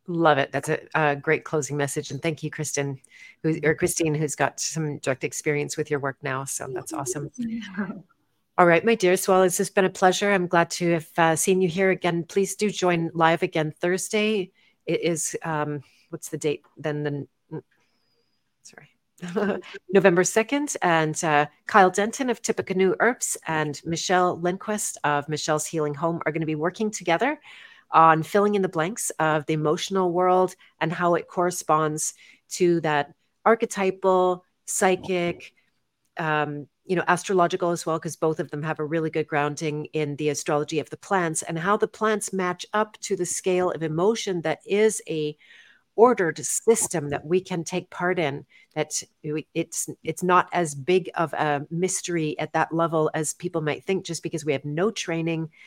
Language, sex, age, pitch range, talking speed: English, female, 40-59, 155-185 Hz, 180 wpm